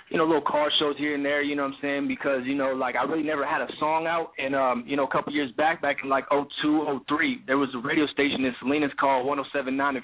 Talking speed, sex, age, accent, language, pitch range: 280 wpm, male, 20-39, American, English, 130-145 Hz